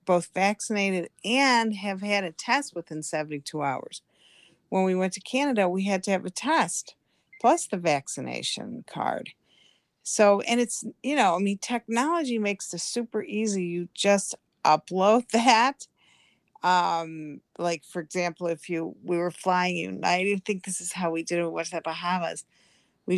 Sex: female